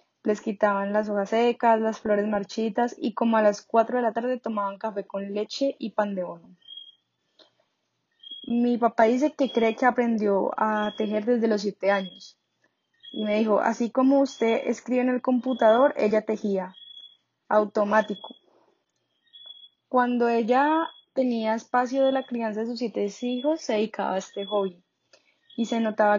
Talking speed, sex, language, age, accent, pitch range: 160 wpm, female, Spanish, 10-29, Colombian, 210-245 Hz